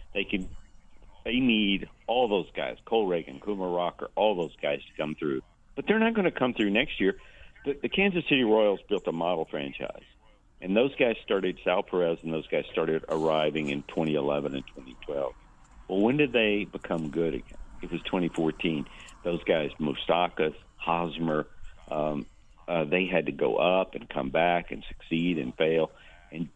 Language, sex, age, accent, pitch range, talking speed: English, male, 50-69, American, 80-105 Hz, 175 wpm